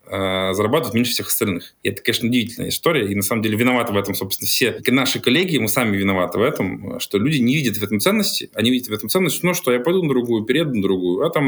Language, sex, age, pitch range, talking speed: Russian, male, 20-39, 100-125 Hz, 260 wpm